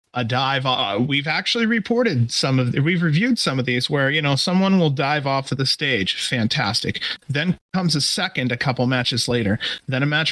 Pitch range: 125-165 Hz